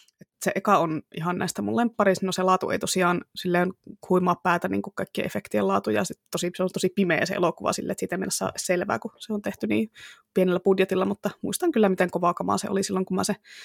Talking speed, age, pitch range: 235 wpm, 20-39, 180-220 Hz